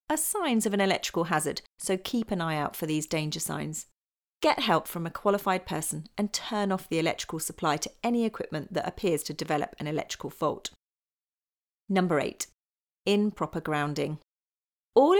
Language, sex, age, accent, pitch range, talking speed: English, female, 40-59, British, 155-205 Hz, 165 wpm